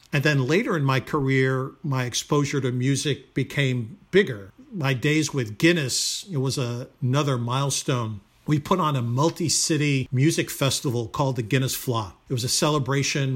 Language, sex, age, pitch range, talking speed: English, male, 50-69, 130-150 Hz, 155 wpm